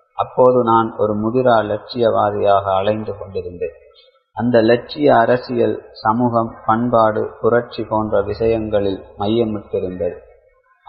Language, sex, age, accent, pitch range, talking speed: Tamil, male, 30-49, native, 105-125 Hz, 90 wpm